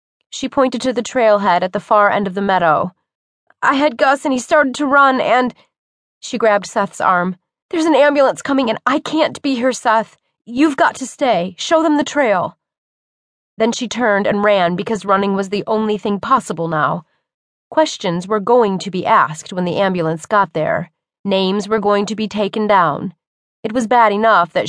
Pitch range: 185-240 Hz